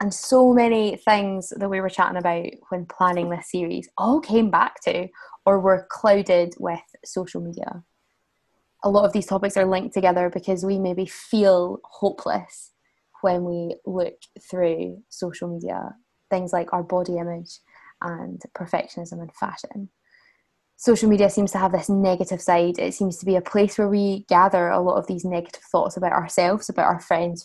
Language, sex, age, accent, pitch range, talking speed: English, female, 20-39, British, 175-205 Hz, 175 wpm